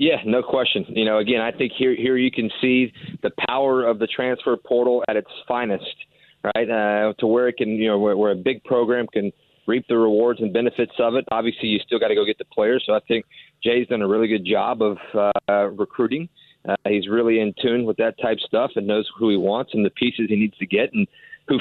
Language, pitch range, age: English, 110-130 Hz, 30-49